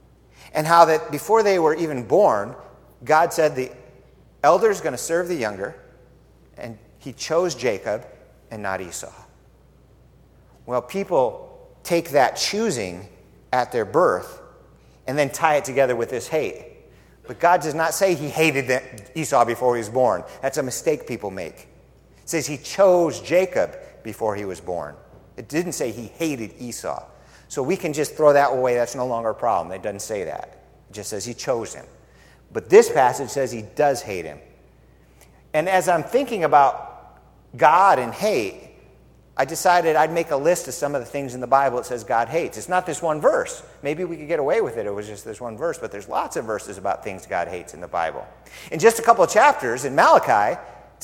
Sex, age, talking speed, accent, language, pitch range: male, 50-69, 200 wpm, American, English, 125-180 Hz